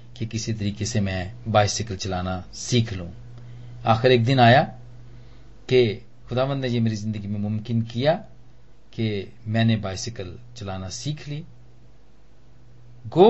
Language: Hindi